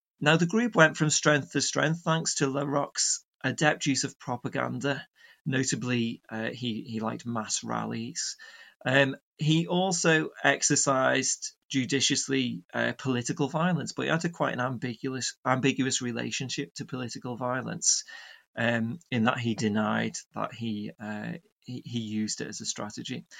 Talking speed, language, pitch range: 145 wpm, English, 120-155 Hz